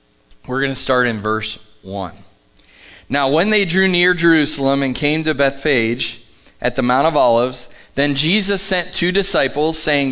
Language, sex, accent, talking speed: English, male, American, 165 wpm